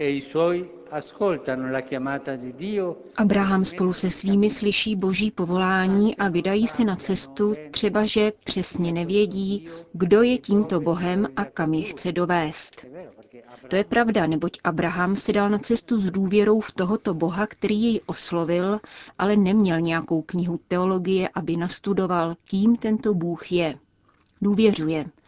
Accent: native